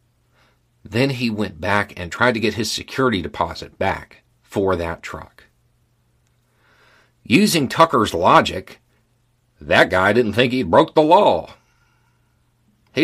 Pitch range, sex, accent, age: 90-120 Hz, male, American, 50-69